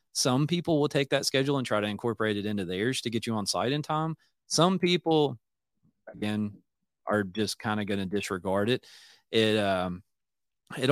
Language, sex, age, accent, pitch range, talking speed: English, male, 20-39, American, 100-125 Hz, 185 wpm